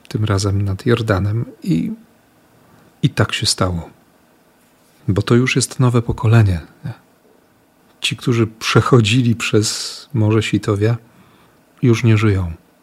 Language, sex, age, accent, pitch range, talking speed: Polish, male, 40-59, native, 100-120 Hz, 110 wpm